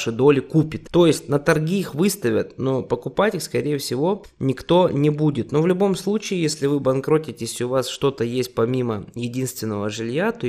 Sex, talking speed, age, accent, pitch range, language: male, 185 wpm, 20-39, native, 125-160 Hz, Russian